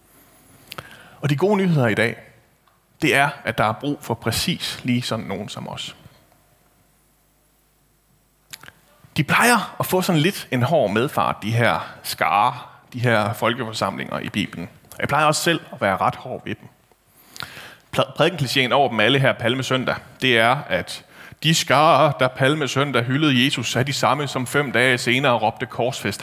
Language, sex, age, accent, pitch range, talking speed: Danish, male, 30-49, native, 115-145 Hz, 160 wpm